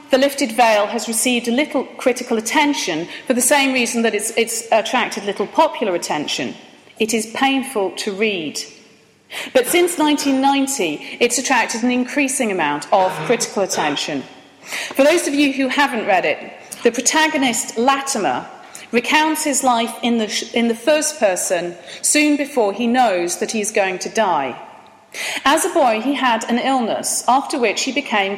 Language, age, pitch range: English, 40-59, 220-285 Hz